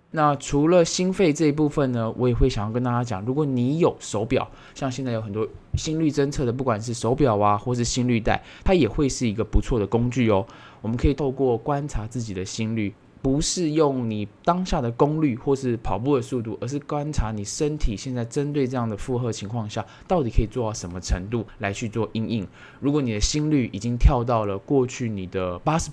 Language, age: Chinese, 20-39